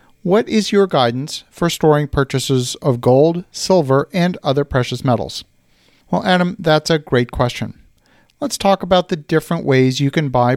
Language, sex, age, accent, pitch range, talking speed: English, male, 50-69, American, 125-160 Hz, 165 wpm